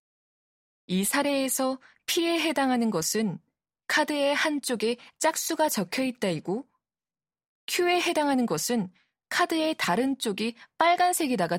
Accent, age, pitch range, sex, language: native, 20-39, 205-300 Hz, female, Korean